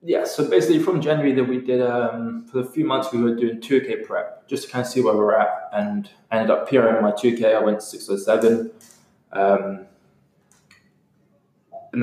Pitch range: 105-175 Hz